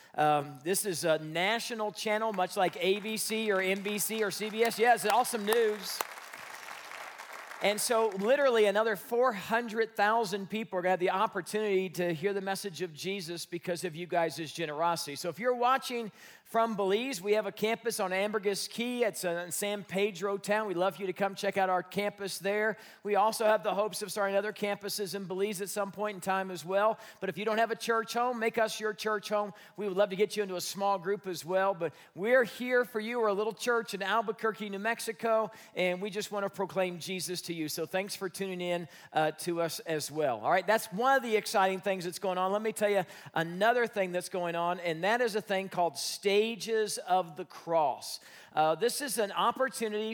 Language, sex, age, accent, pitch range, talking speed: English, male, 40-59, American, 185-220 Hz, 215 wpm